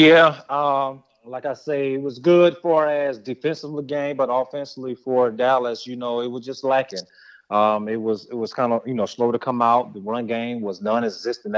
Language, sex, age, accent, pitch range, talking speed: English, male, 30-49, American, 110-125 Hz, 205 wpm